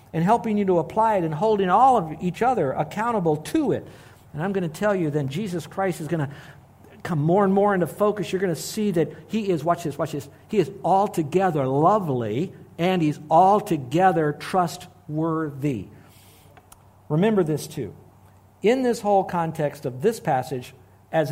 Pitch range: 135-180 Hz